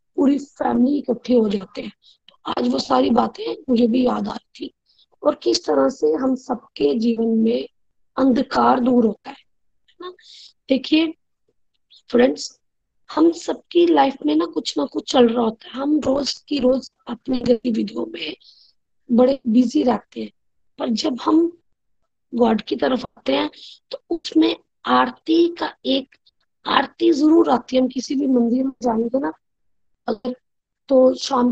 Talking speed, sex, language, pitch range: 155 wpm, female, Hindi, 240-295 Hz